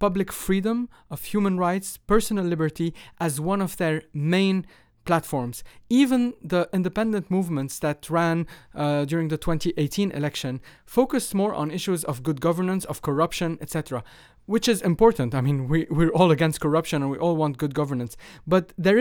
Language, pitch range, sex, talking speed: English, 145-185 Hz, male, 160 wpm